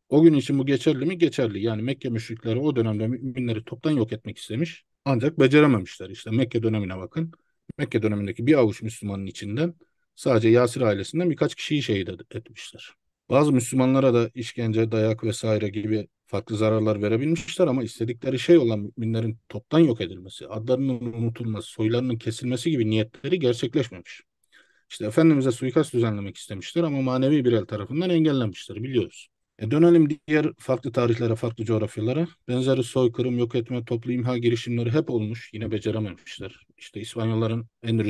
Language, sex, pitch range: Turkish, male, 110-140 Hz